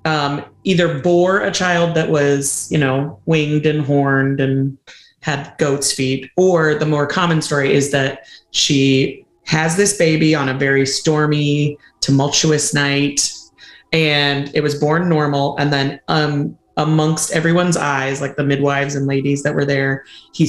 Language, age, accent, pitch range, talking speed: English, 30-49, American, 140-155 Hz, 155 wpm